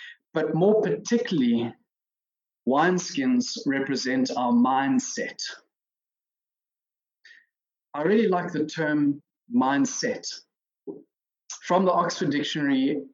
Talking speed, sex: 80 wpm, male